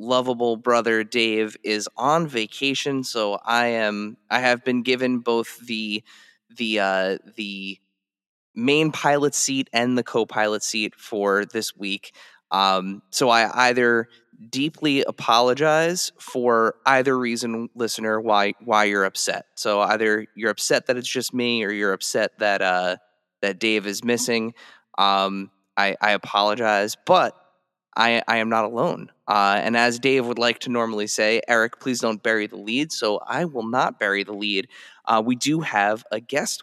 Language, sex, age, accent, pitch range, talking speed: English, male, 20-39, American, 105-125 Hz, 160 wpm